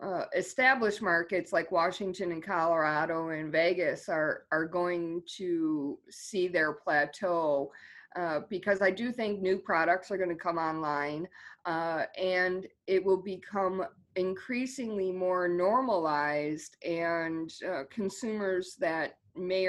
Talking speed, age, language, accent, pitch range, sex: 125 wpm, 20-39, English, American, 170-205 Hz, female